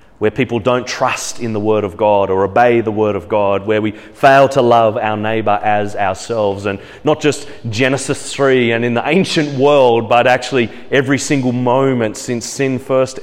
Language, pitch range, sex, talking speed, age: English, 120-160 Hz, male, 190 wpm, 30-49